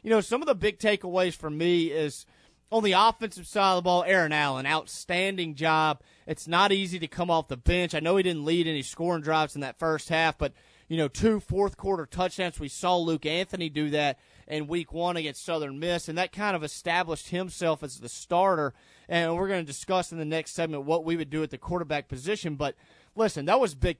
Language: English